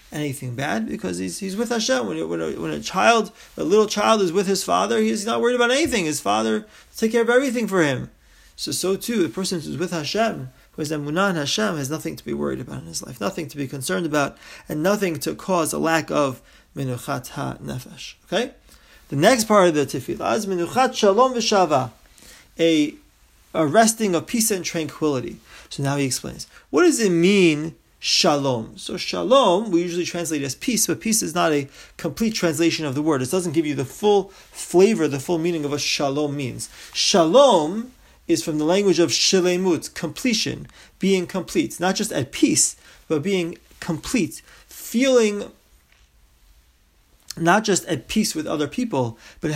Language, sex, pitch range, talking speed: English, male, 145-205 Hz, 185 wpm